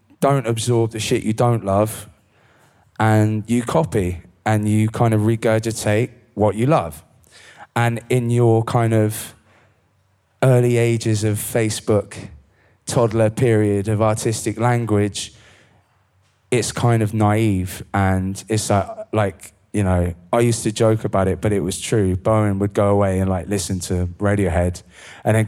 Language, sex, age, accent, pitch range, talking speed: English, male, 20-39, British, 100-120 Hz, 145 wpm